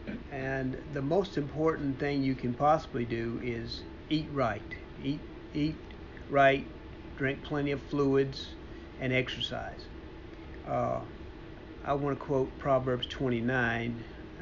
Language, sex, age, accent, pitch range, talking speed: English, male, 50-69, American, 125-145 Hz, 115 wpm